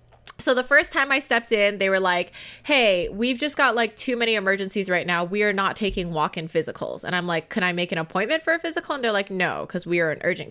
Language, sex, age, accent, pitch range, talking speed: English, female, 20-39, American, 180-250 Hz, 265 wpm